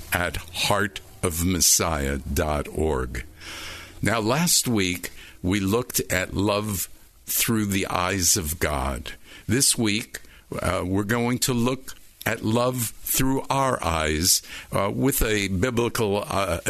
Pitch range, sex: 85-115 Hz, male